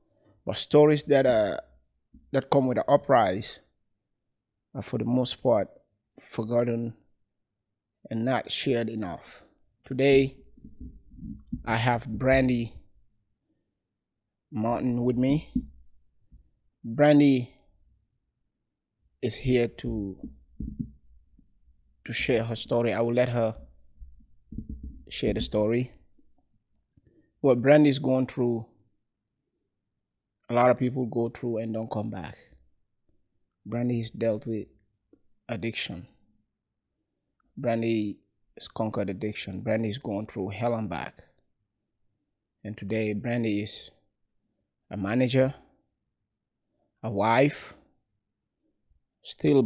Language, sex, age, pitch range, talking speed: English, male, 30-49, 100-120 Hz, 100 wpm